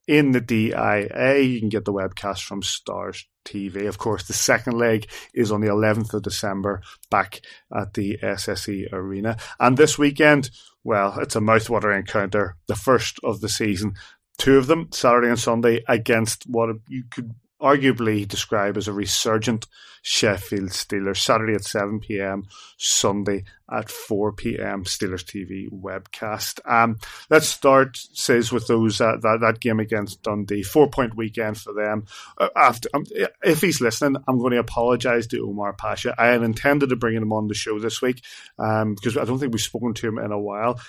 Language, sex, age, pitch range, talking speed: English, male, 30-49, 100-120 Hz, 180 wpm